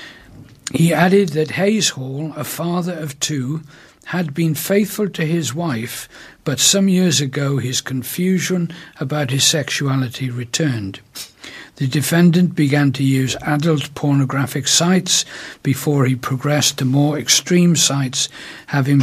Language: English